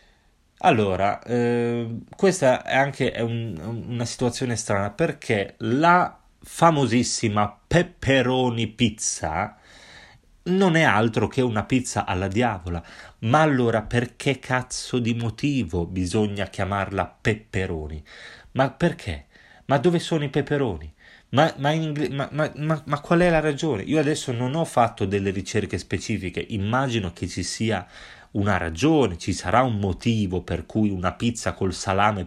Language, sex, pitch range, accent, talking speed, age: Italian, male, 95-130 Hz, native, 140 wpm, 30-49